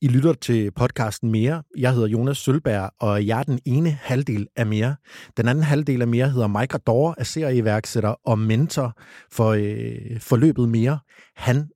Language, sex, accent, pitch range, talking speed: Danish, male, native, 115-140 Hz, 175 wpm